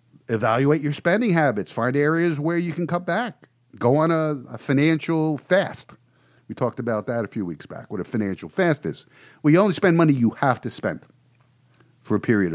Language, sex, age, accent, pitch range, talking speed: English, male, 50-69, American, 115-165 Hz, 205 wpm